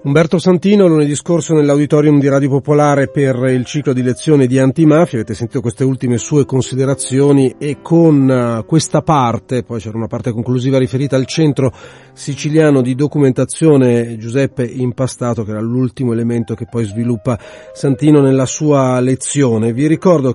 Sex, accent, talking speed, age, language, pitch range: male, native, 150 wpm, 40-59, Italian, 120-150 Hz